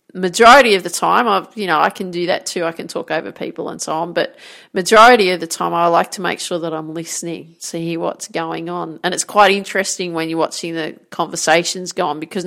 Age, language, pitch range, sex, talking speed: 30-49, English, 170-210 Hz, female, 235 wpm